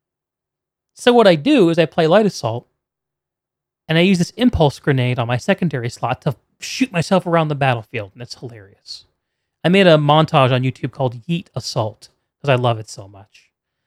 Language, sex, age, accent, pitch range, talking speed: English, male, 30-49, American, 130-180 Hz, 185 wpm